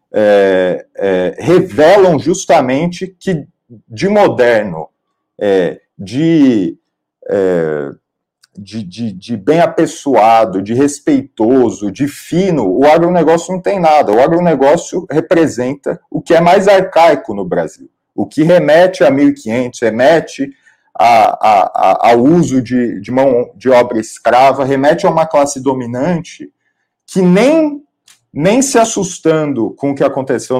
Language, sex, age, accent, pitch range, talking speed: Portuguese, male, 40-59, Brazilian, 130-185 Hz, 120 wpm